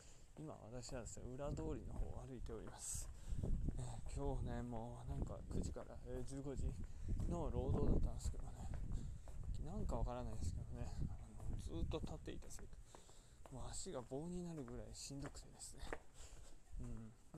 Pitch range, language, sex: 110-150 Hz, Japanese, male